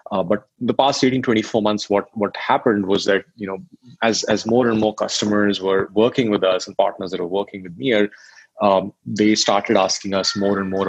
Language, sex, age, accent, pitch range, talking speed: English, male, 30-49, Indian, 95-110 Hz, 215 wpm